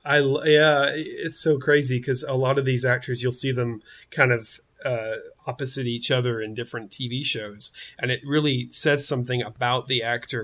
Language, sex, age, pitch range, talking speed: English, male, 30-49, 125-145 Hz, 185 wpm